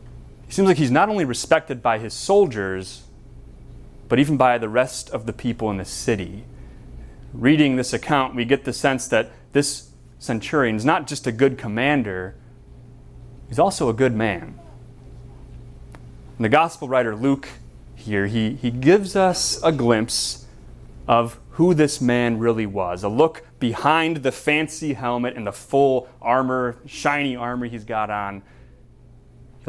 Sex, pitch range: male, 115-140 Hz